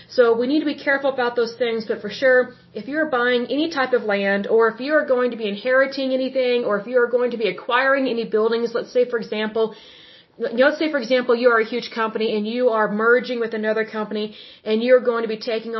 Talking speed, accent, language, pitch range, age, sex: 245 wpm, American, German, 215-250 Hz, 30-49, female